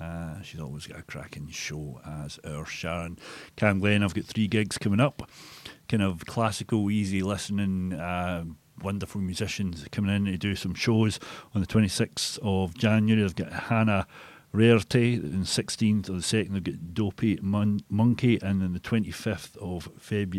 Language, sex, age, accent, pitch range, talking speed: English, male, 40-59, British, 95-110 Hz, 175 wpm